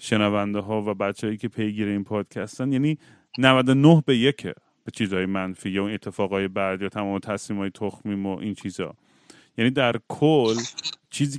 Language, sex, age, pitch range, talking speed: Persian, male, 30-49, 105-135 Hz, 155 wpm